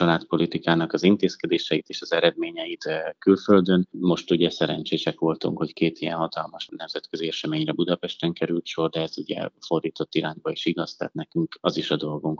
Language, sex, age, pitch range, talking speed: Hungarian, male, 30-49, 80-90 Hz, 165 wpm